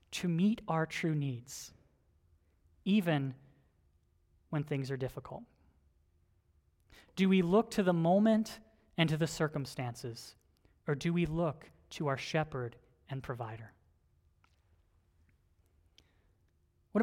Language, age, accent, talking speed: English, 30-49, American, 105 wpm